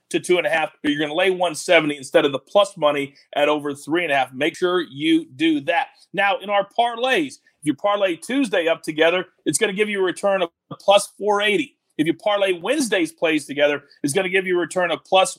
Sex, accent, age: male, American, 40-59